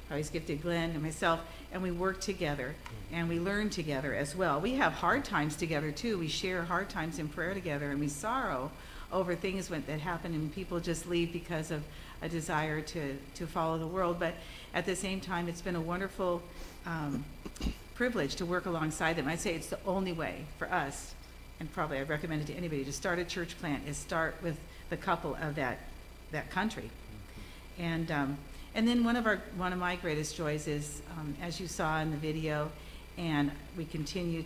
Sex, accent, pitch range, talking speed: female, American, 150-185 Hz, 200 wpm